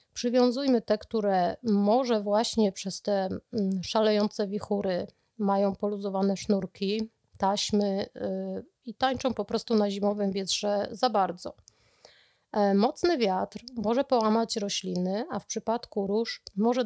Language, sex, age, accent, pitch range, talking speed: Polish, female, 30-49, native, 195-230 Hz, 115 wpm